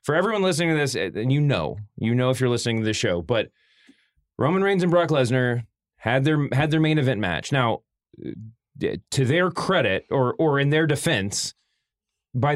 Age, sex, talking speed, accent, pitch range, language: 30-49, male, 185 wpm, American, 105-135 Hz, English